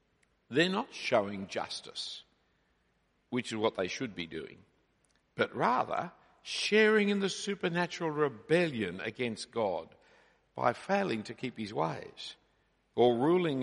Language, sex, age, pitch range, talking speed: English, male, 60-79, 115-170 Hz, 125 wpm